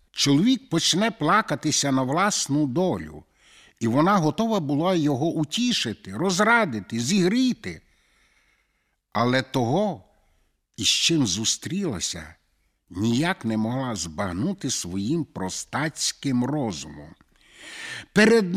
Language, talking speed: Ukrainian, 85 wpm